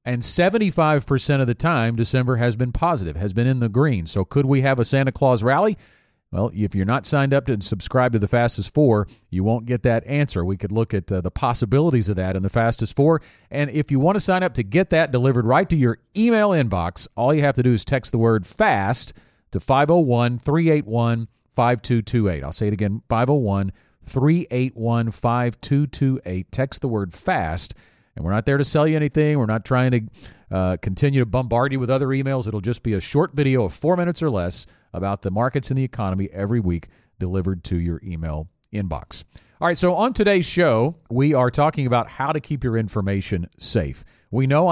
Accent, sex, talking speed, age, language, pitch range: American, male, 205 wpm, 40-59, English, 105-140 Hz